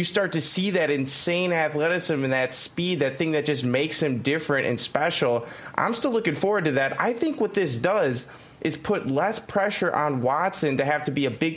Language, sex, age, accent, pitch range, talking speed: English, male, 20-39, American, 135-190 Hz, 220 wpm